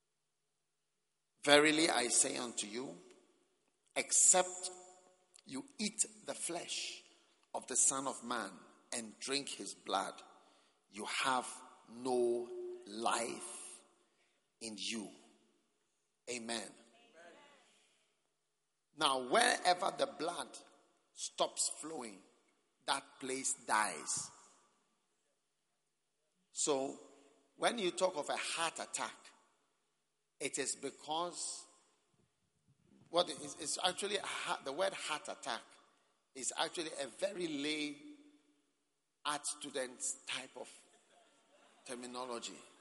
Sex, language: male, English